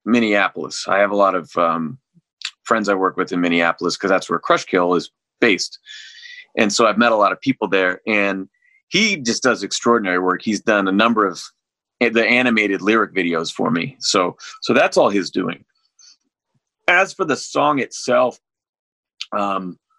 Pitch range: 95-125 Hz